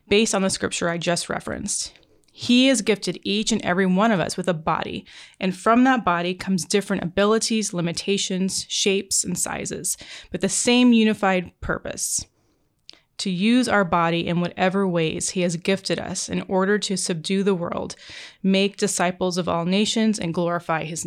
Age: 20-39